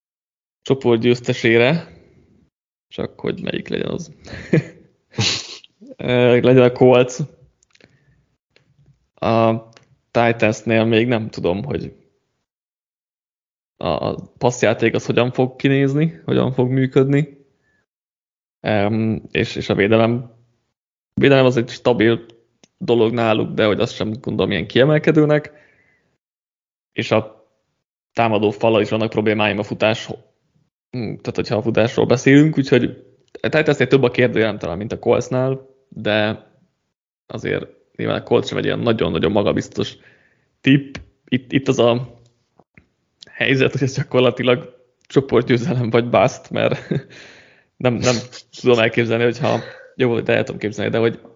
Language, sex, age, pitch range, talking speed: Hungarian, male, 20-39, 110-130 Hz, 120 wpm